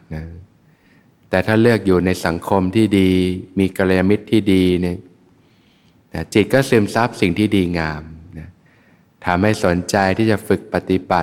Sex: male